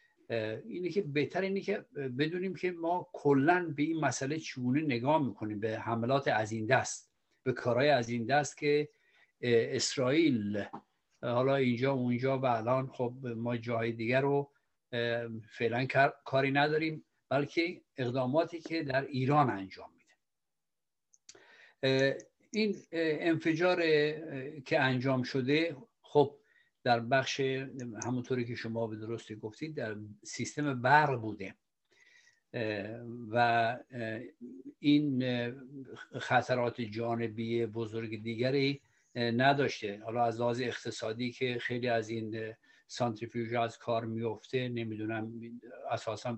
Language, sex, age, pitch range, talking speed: Persian, male, 60-79, 115-145 Hz, 115 wpm